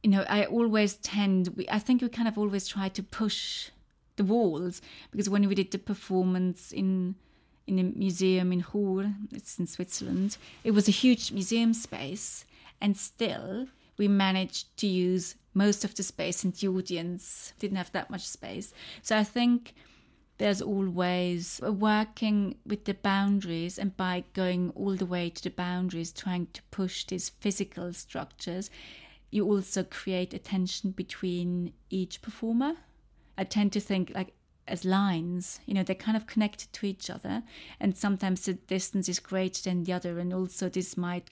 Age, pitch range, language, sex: 30-49, 180-205 Hz, English, female